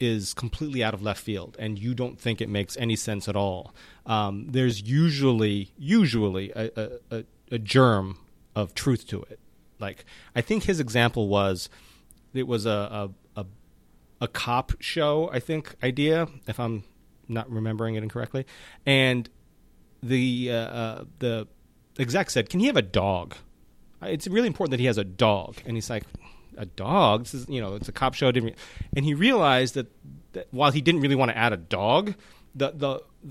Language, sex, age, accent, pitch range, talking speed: English, male, 30-49, American, 105-130 Hz, 180 wpm